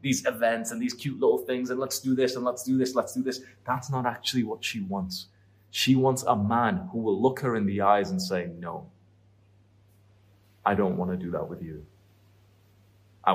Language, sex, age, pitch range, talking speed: English, male, 30-49, 100-125 Hz, 210 wpm